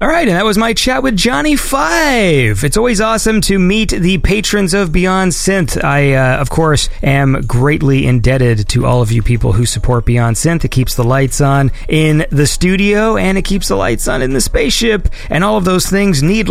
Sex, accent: male, American